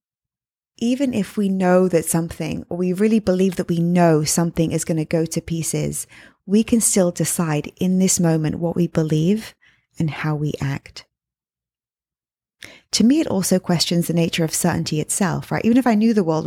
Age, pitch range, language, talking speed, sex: 20-39, 165-200 Hz, English, 185 wpm, female